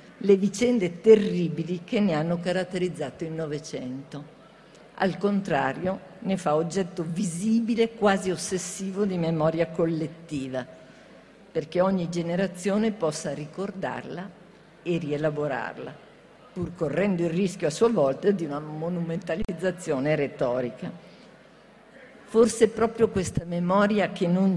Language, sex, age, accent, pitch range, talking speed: Italian, female, 50-69, native, 155-195 Hz, 105 wpm